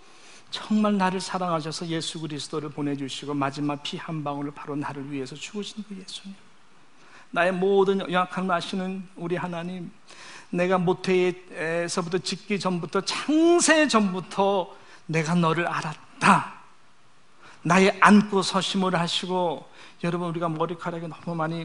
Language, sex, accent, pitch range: Korean, male, native, 170-220 Hz